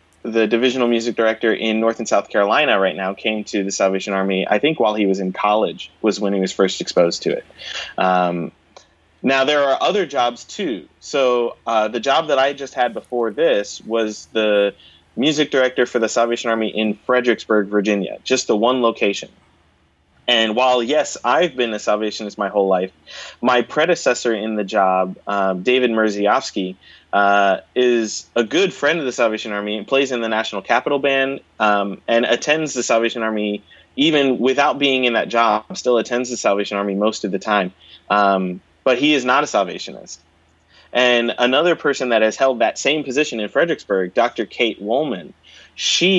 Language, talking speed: English, 180 wpm